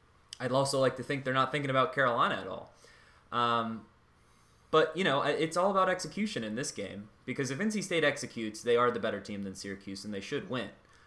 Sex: male